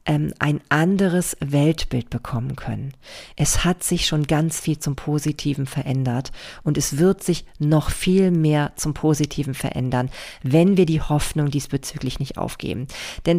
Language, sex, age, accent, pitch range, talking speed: German, female, 40-59, German, 145-180 Hz, 145 wpm